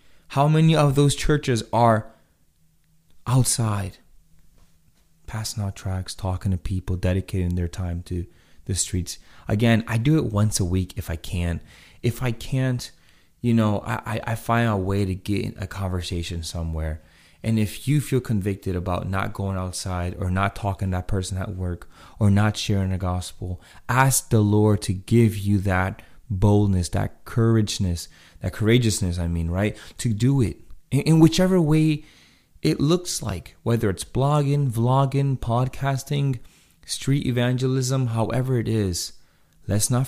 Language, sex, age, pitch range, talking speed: English, male, 30-49, 85-115 Hz, 155 wpm